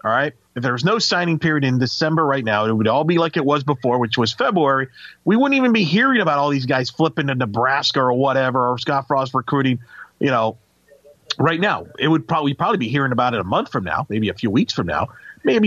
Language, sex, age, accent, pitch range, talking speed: English, male, 40-59, American, 125-165 Hz, 245 wpm